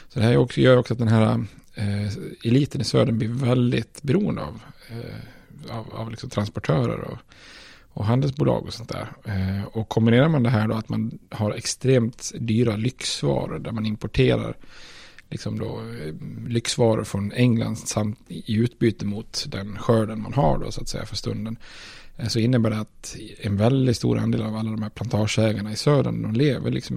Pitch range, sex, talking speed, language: 105-125 Hz, male, 180 wpm, Swedish